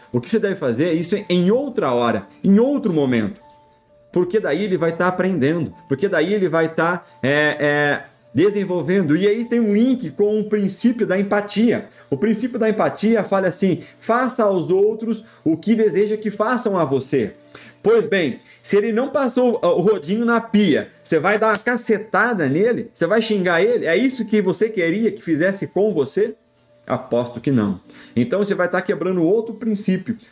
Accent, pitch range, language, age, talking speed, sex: Brazilian, 145-215 Hz, Portuguese, 40-59, 180 wpm, male